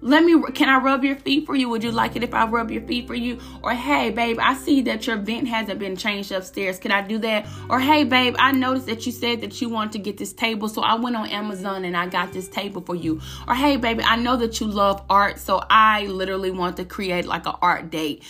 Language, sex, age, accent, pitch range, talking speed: English, female, 20-39, American, 190-240 Hz, 270 wpm